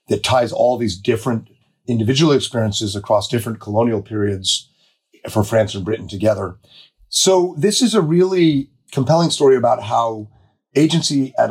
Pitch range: 110-145 Hz